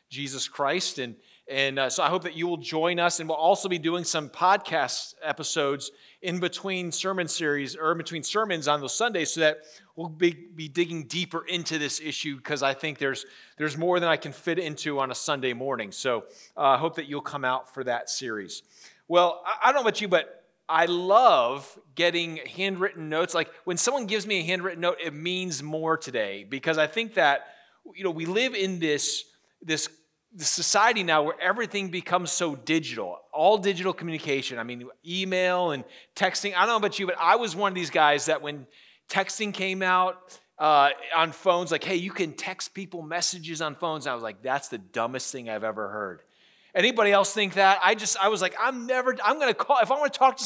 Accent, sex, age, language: American, male, 40-59, English